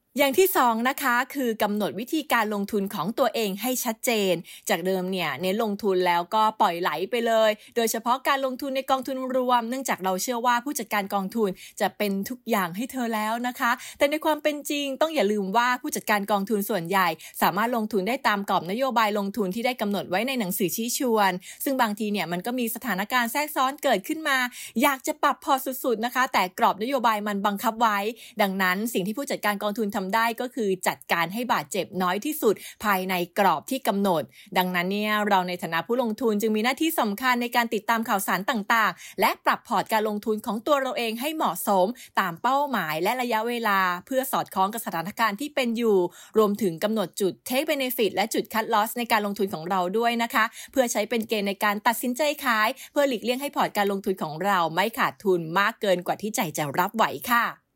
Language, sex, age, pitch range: English, female, 20-39, 200-250 Hz